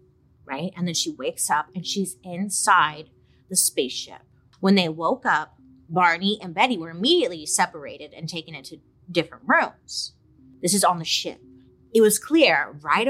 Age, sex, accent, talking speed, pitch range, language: 30-49, female, American, 160 wpm, 150-215 Hz, English